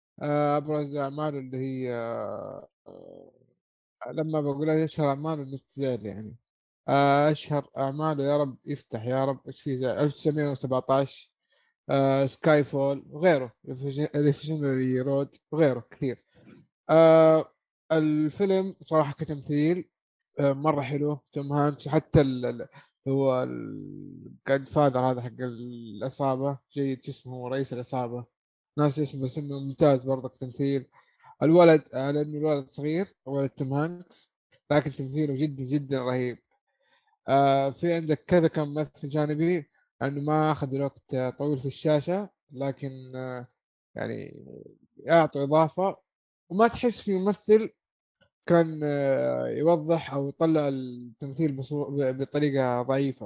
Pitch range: 135-155 Hz